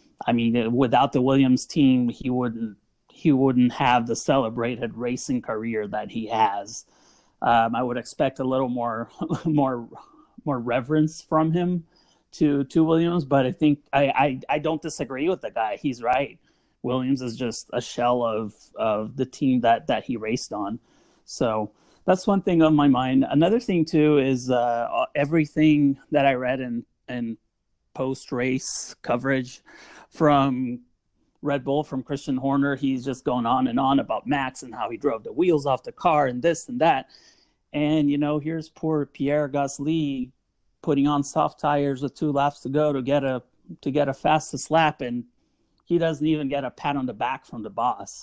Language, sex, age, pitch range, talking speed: English, male, 30-49, 125-150 Hz, 180 wpm